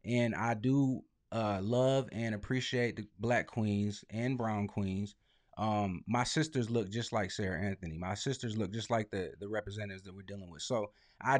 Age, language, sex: 30-49, English, male